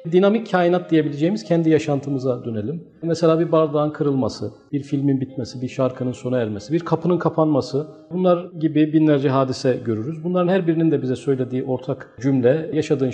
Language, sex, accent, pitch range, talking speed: Turkish, male, native, 120-160 Hz, 155 wpm